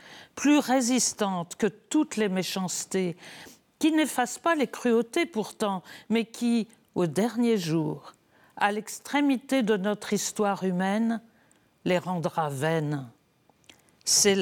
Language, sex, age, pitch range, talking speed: French, female, 50-69, 175-230 Hz, 110 wpm